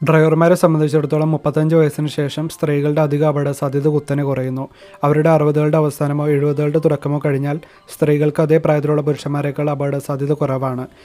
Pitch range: 145-160 Hz